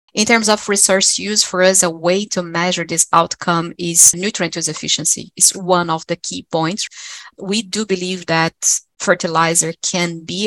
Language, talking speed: English, 170 wpm